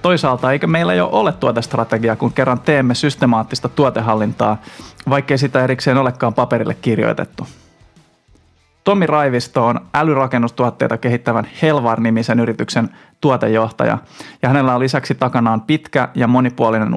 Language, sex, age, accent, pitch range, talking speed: Finnish, male, 20-39, native, 115-140 Hz, 115 wpm